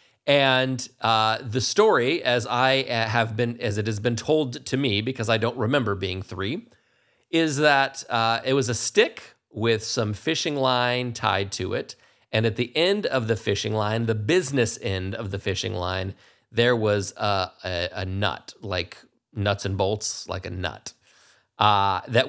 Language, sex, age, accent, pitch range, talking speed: English, male, 30-49, American, 110-135 Hz, 175 wpm